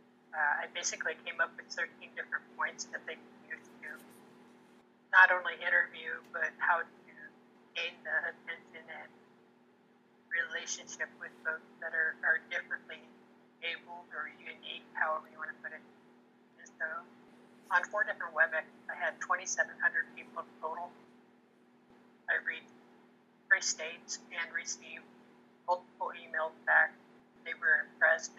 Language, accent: English, American